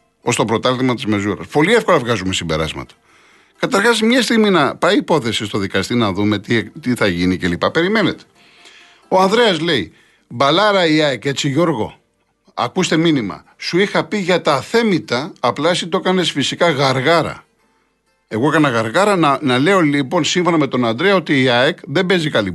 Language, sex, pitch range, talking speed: Greek, male, 120-175 Hz, 170 wpm